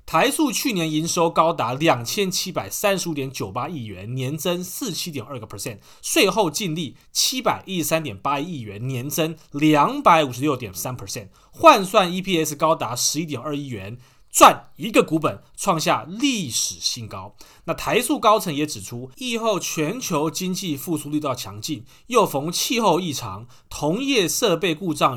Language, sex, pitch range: Chinese, male, 130-195 Hz